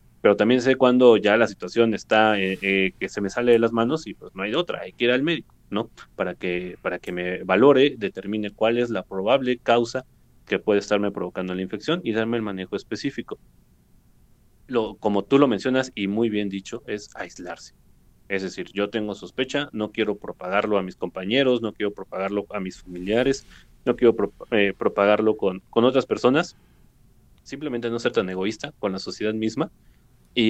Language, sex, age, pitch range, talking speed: Spanish, male, 30-49, 95-120 Hz, 195 wpm